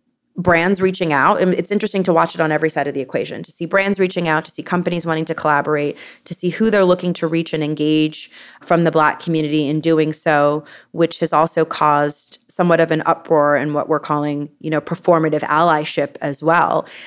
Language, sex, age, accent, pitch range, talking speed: English, female, 30-49, American, 150-170 Hz, 205 wpm